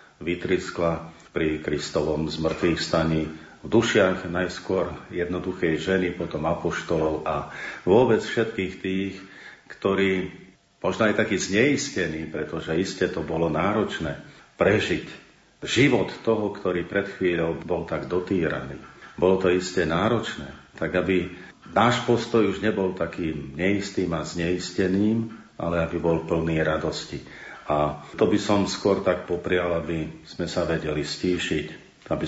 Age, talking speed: 50-69, 125 wpm